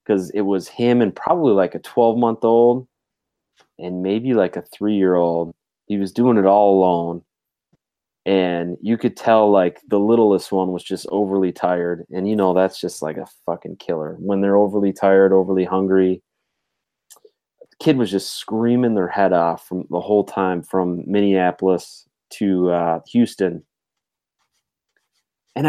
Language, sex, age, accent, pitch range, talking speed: English, male, 20-39, American, 90-110 Hz, 150 wpm